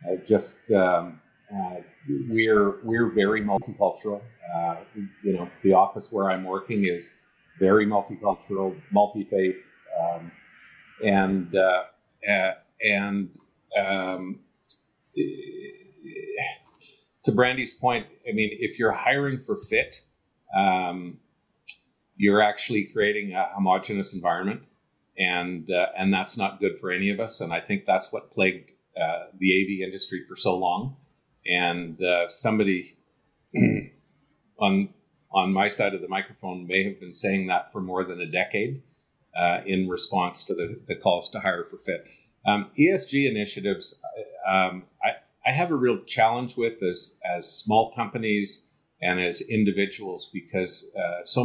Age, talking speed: 50-69, 140 wpm